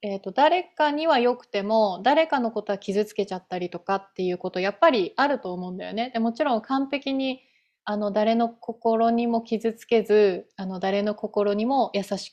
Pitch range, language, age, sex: 190-235 Hz, Japanese, 20-39, female